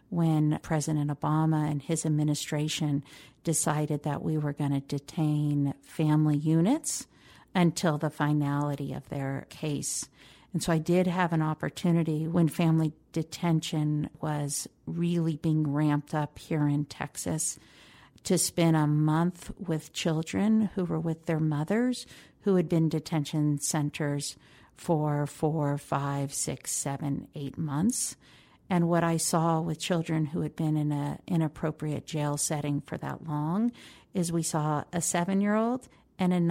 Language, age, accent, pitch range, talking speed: English, 50-69, American, 150-175 Hz, 140 wpm